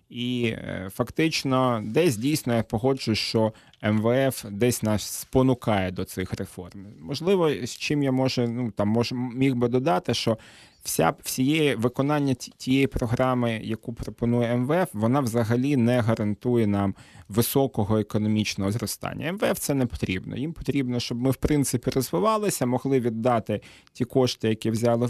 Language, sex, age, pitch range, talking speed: Ukrainian, male, 30-49, 110-135 Hz, 145 wpm